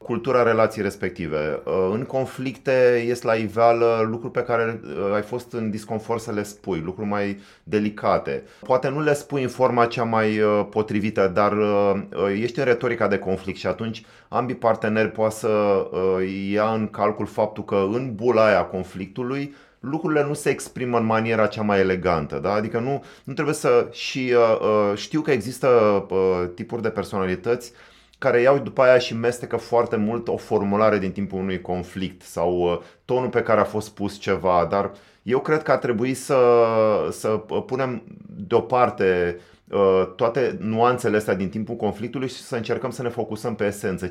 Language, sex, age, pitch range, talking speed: Romanian, male, 30-49, 100-120 Hz, 160 wpm